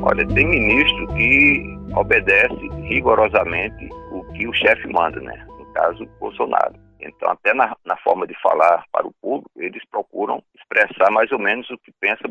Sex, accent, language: male, Brazilian, Portuguese